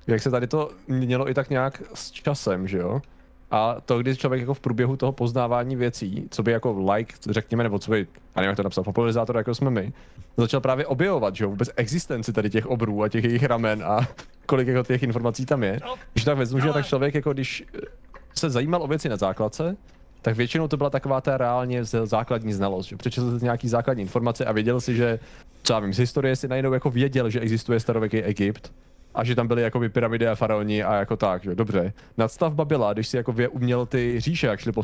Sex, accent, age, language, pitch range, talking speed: male, native, 30-49, Czech, 110-135 Hz, 220 wpm